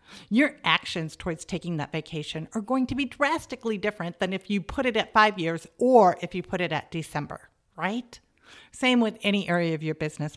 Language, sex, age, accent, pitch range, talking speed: English, female, 50-69, American, 170-235 Hz, 205 wpm